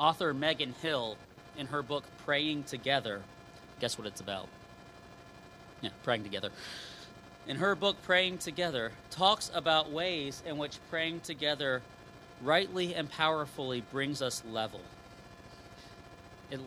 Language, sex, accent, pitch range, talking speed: English, male, American, 120-160 Hz, 120 wpm